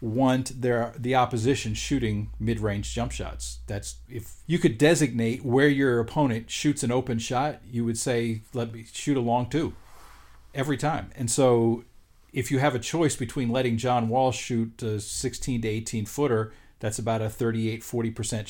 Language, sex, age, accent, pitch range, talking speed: English, male, 40-59, American, 110-130 Hz, 165 wpm